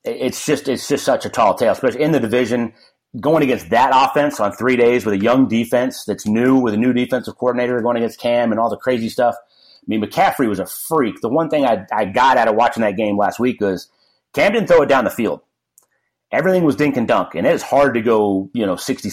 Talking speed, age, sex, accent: 245 wpm, 30-49, male, American